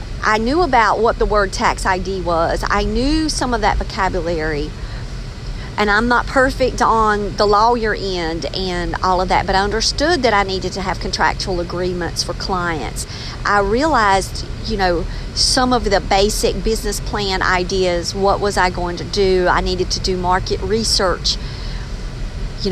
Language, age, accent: English, 50-69, American